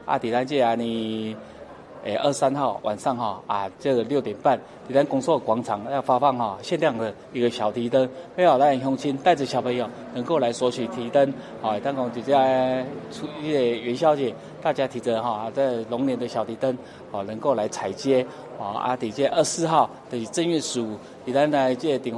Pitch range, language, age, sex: 120-145 Hz, Chinese, 20-39, male